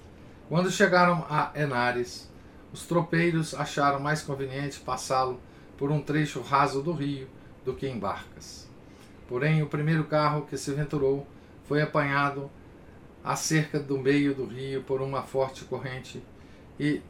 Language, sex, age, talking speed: Portuguese, male, 50-69, 135 wpm